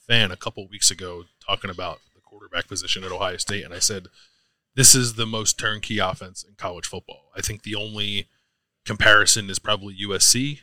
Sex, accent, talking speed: male, American, 190 wpm